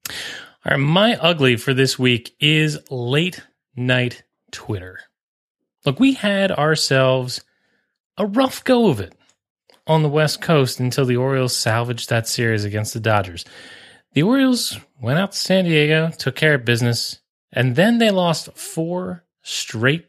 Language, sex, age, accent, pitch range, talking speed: English, male, 30-49, American, 115-175 Hz, 145 wpm